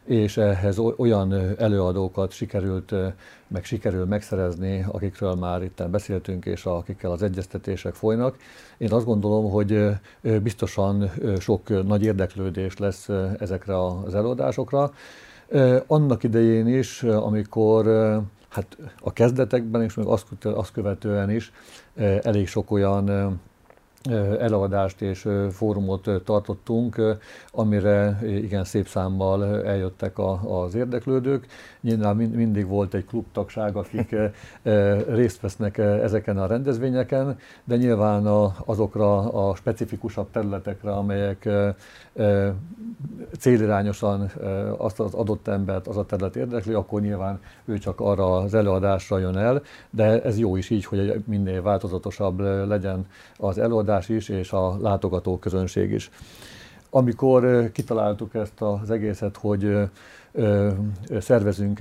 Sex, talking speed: male, 110 wpm